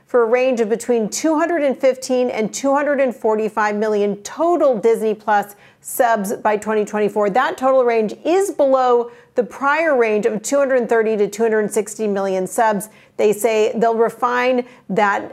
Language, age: English, 50-69